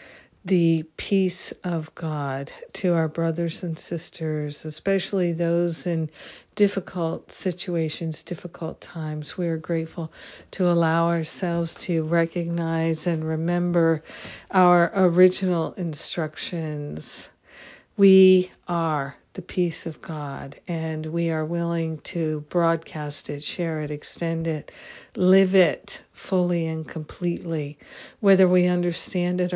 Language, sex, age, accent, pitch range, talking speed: English, female, 60-79, American, 160-180 Hz, 110 wpm